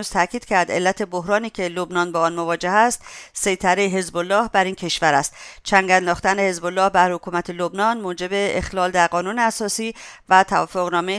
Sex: female